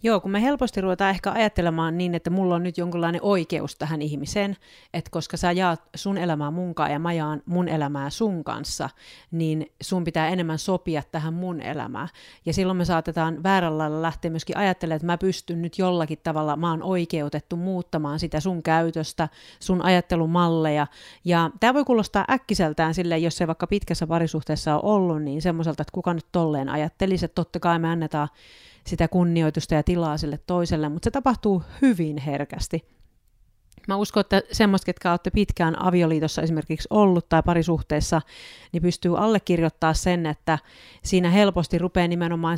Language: Finnish